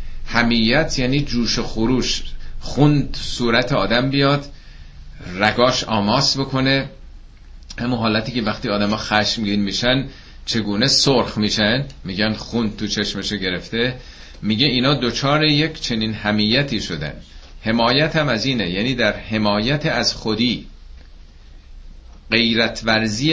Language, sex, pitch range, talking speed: Persian, male, 95-130 Hz, 110 wpm